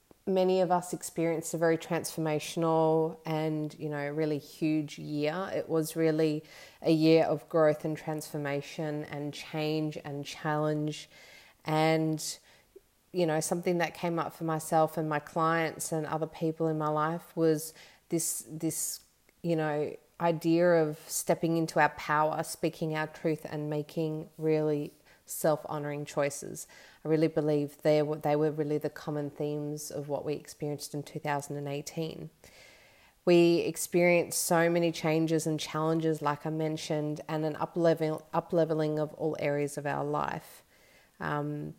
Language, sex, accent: English, female, Australian